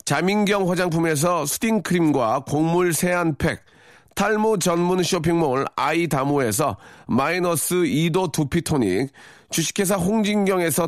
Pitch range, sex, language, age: 165-210 Hz, male, Korean, 40-59